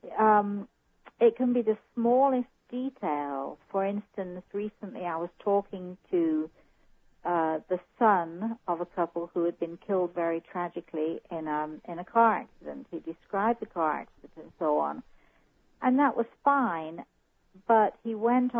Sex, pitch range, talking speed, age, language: female, 160-205 Hz, 140 wpm, 50-69, English